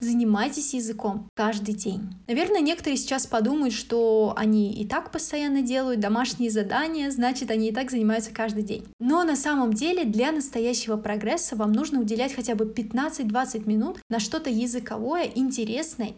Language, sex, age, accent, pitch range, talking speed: Russian, female, 20-39, native, 215-265 Hz, 150 wpm